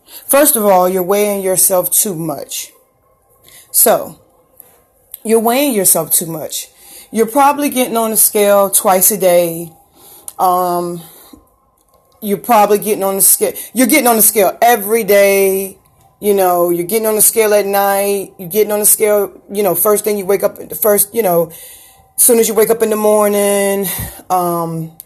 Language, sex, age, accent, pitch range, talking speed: English, female, 30-49, American, 185-230 Hz, 170 wpm